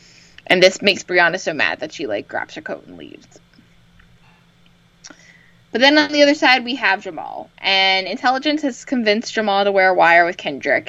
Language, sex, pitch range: English, female, 190-285 Hz